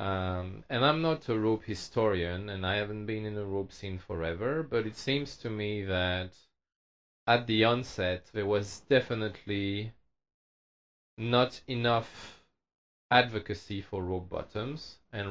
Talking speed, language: 135 wpm, English